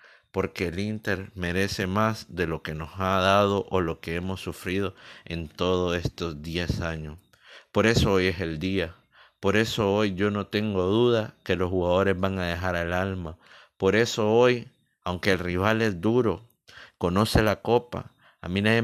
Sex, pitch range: male, 90-110 Hz